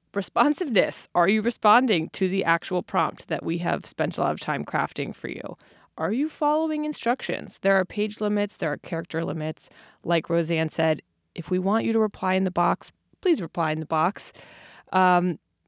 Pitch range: 175-215 Hz